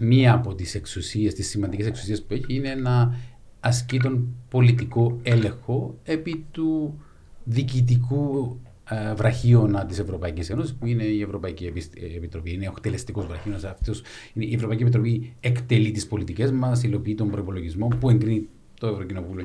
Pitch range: 105-130 Hz